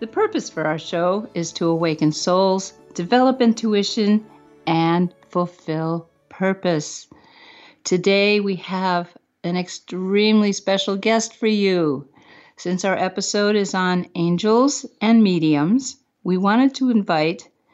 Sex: female